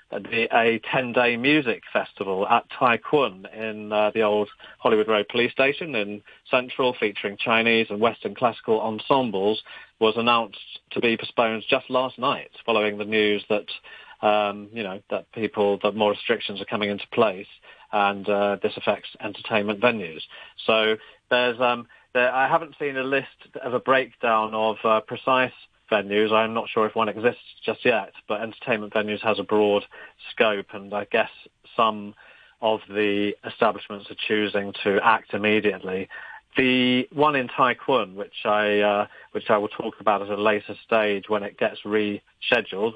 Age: 30-49